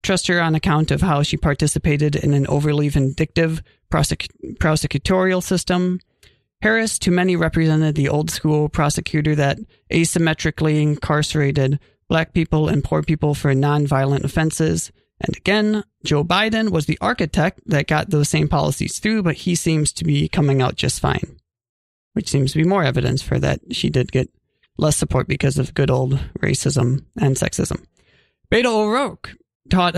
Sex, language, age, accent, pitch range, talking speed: male, English, 30-49, American, 145-180 Hz, 155 wpm